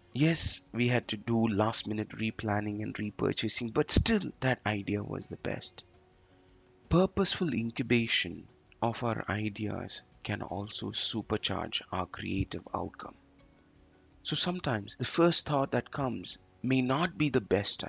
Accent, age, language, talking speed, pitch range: Indian, 30-49, English, 130 wpm, 105-135 Hz